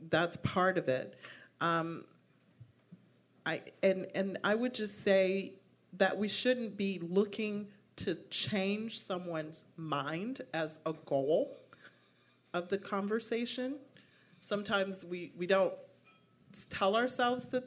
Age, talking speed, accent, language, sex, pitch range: 40-59, 115 wpm, American, English, female, 160-205 Hz